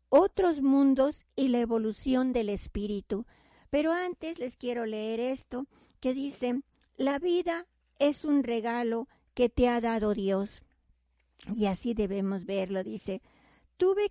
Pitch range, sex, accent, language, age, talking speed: 230-285 Hz, female, American, Spanish, 50-69, 130 wpm